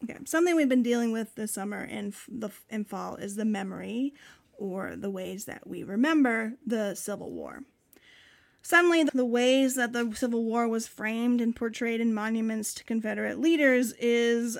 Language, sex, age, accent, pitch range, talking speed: English, female, 30-49, American, 220-265 Hz, 175 wpm